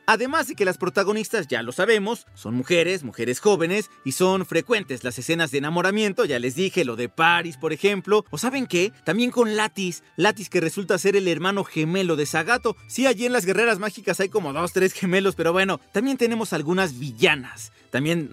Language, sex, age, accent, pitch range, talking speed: Spanish, male, 40-59, Mexican, 155-215 Hz, 195 wpm